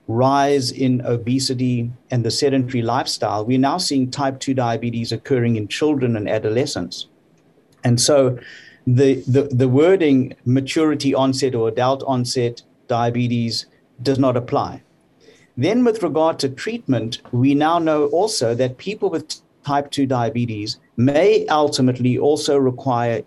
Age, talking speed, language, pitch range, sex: 50-69, 135 wpm, English, 120-140 Hz, male